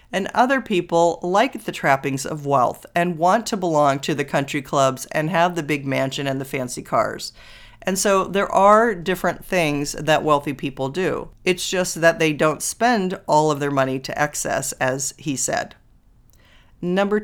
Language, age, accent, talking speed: English, 40-59, American, 180 wpm